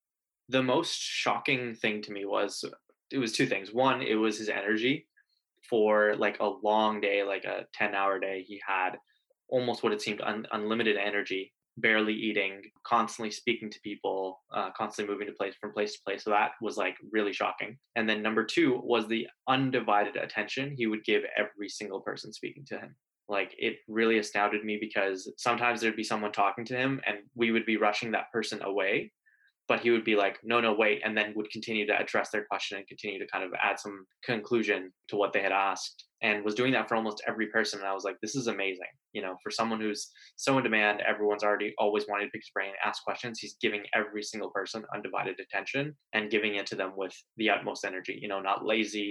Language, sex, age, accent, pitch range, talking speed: English, male, 20-39, American, 100-115 Hz, 215 wpm